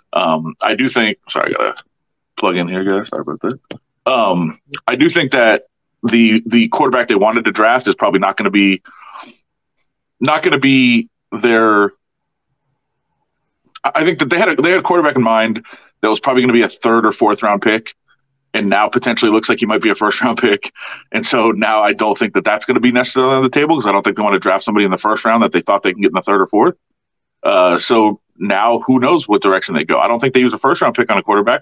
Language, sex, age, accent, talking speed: English, male, 30-49, American, 255 wpm